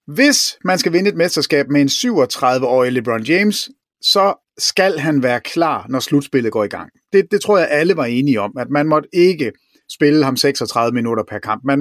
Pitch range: 140-200 Hz